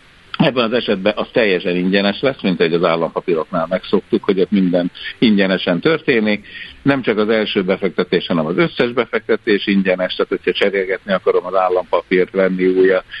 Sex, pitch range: male, 95-150 Hz